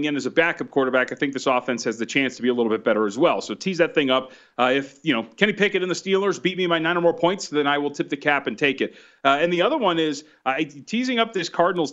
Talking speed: 305 wpm